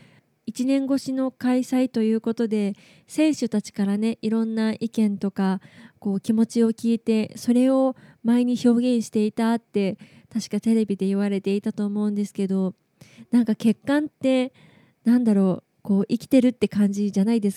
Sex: female